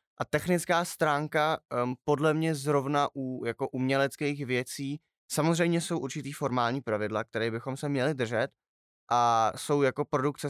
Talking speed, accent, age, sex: 145 wpm, native, 20-39, male